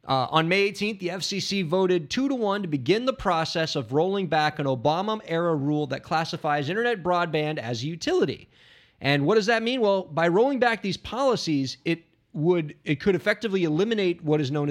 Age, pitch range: 30-49, 125-185 Hz